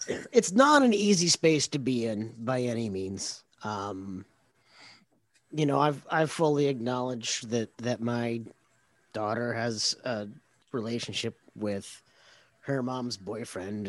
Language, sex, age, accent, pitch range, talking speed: English, male, 30-49, American, 105-145 Hz, 125 wpm